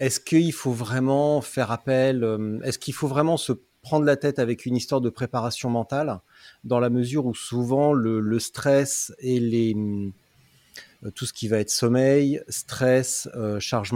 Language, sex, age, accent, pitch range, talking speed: French, male, 30-49, French, 110-125 Hz, 165 wpm